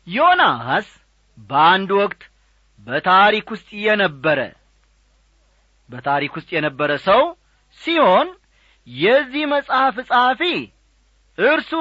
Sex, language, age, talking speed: male, Amharic, 40-59, 75 wpm